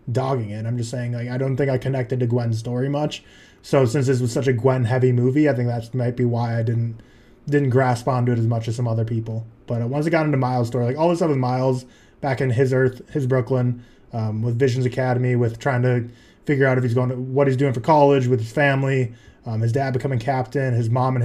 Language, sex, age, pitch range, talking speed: English, male, 20-39, 120-140 Hz, 250 wpm